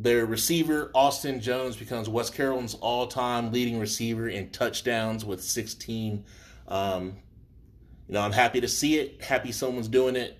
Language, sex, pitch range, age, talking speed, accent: English, male, 105-125 Hz, 30-49, 150 wpm, American